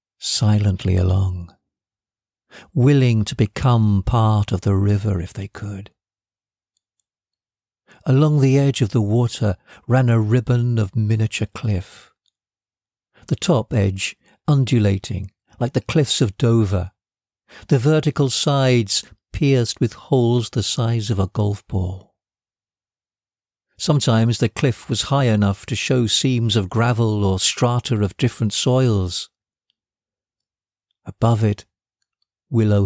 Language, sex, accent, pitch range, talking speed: English, male, British, 100-120 Hz, 115 wpm